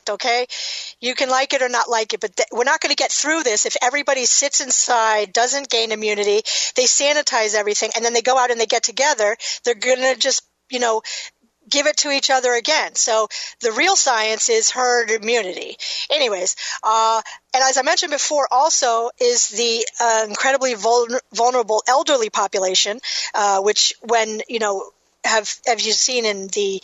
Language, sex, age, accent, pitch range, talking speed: English, female, 40-59, American, 220-275 Hz, 185 wpm